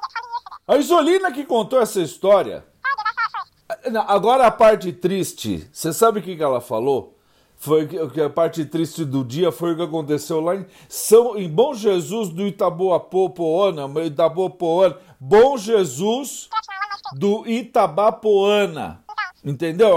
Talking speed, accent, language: 120 wpm, Brazilian, Portuguese